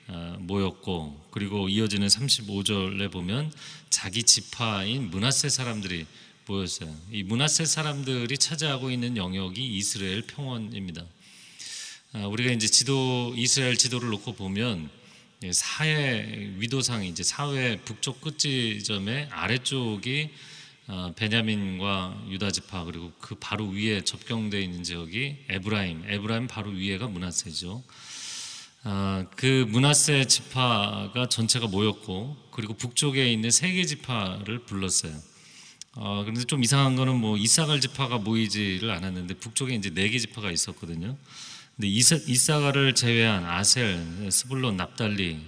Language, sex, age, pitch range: Korean, male, 40-59, 100-130 Hz